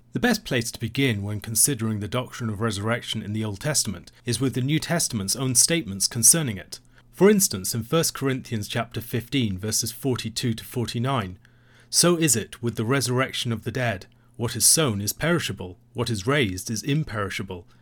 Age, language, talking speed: 40-59, English, 180 wpm